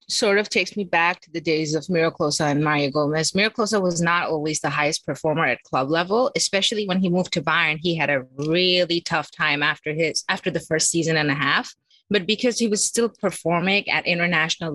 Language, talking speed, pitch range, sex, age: English, 210 wpm, 165-215 Hz, female, 30-49